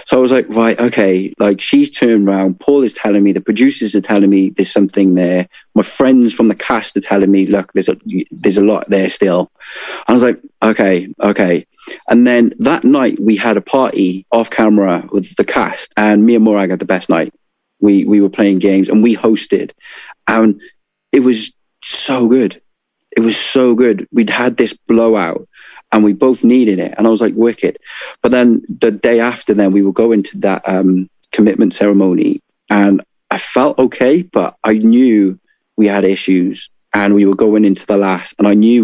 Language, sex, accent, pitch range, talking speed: English, male, British, 95-120 Hz, 200 wpm